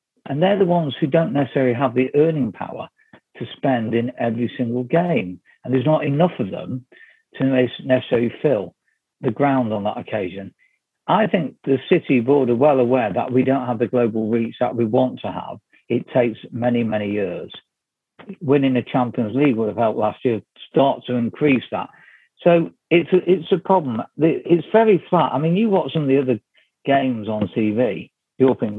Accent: British